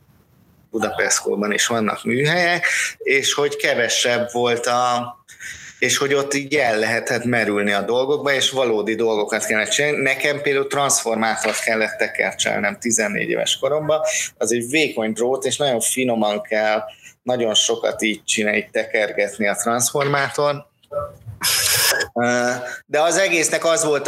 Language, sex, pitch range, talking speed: Hungarian, male, 115-145 Hz, 125 wpm